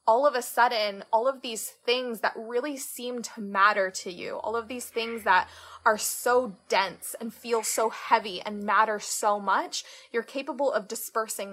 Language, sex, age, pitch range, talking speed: English, female, 20-39, 200-240 Hz, 180 wpm